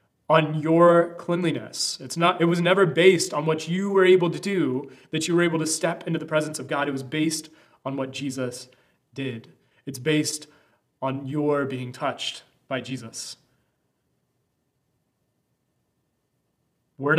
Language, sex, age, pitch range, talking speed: English, male, 30-49, 130-165 Hz, 150 wpm